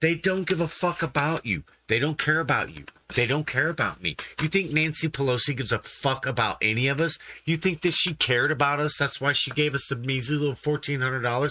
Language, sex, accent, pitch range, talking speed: English, male, American, 115-160 Hz, 225 wpm